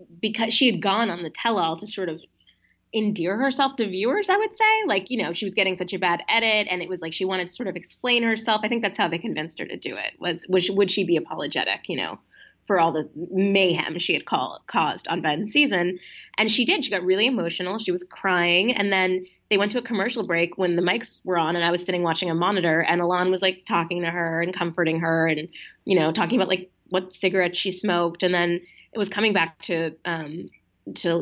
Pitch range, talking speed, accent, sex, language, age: 170-225 Hz, 240 wpm, American, female, English, 20-39